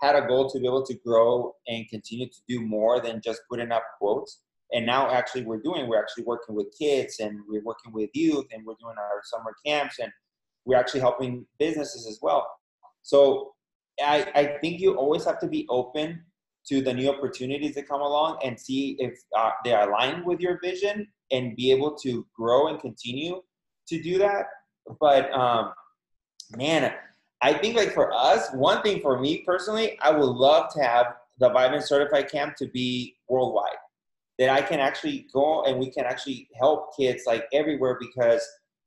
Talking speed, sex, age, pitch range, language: 190 wpm, male, 30-49, 125-160 Hz, English